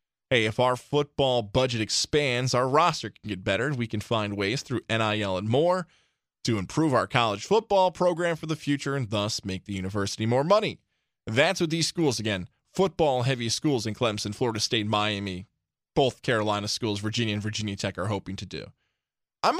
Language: English